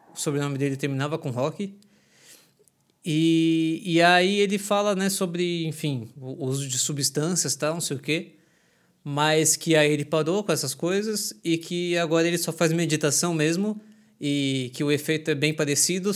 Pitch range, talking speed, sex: 140-175 Hz, 175 wpm, male